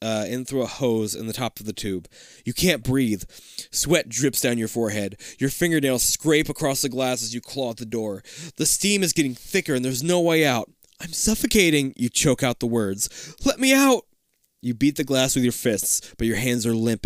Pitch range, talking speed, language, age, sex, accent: 105-140 Hz, 220 wpm, English, 20-39, male, American